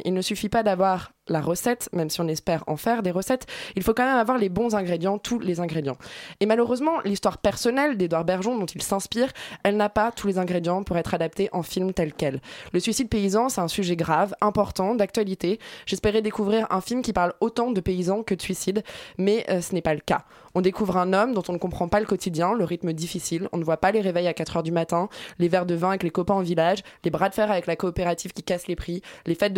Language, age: French, 20-39